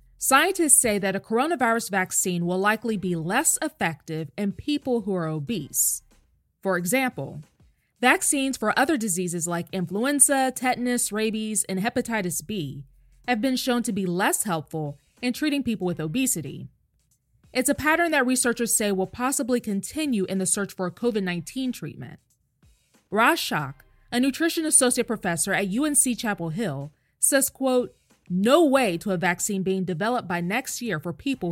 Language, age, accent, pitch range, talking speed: English, 20-39, American, 180-255 Hz, 150 wpm